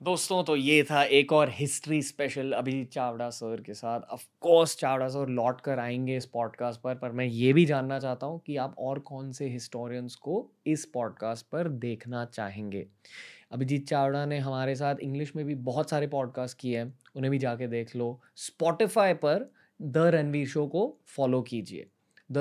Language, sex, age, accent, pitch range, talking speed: Hindi, male, 20-39, native, 125-155 Hz, 180 wpm